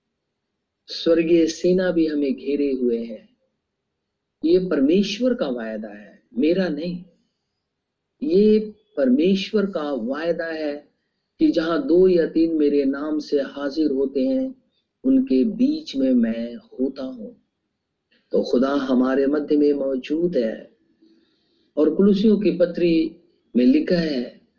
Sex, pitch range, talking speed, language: male, 145-215 Hz, 120 wpm, Hindi